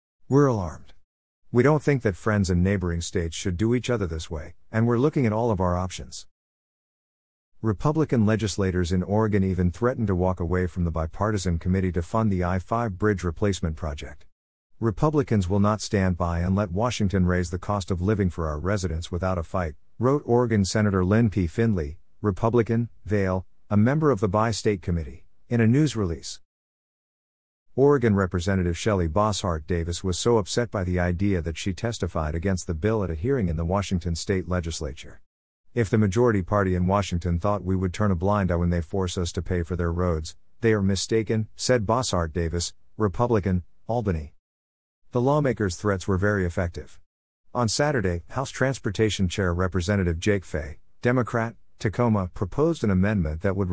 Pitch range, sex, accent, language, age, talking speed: 85-110 Hz, male, American, English, 50-69, 175 wpm